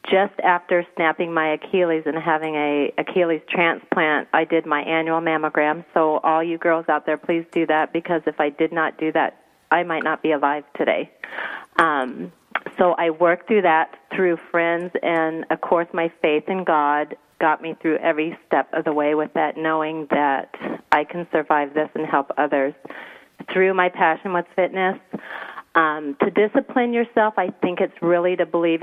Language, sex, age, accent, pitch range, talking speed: English, female, 40-59, American, 150-170 Hz, 180 wpm